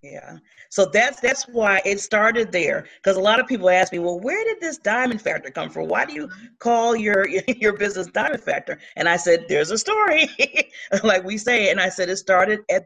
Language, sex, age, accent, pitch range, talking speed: English, female, 40-59, American, 180-260 Hz, 220 wpm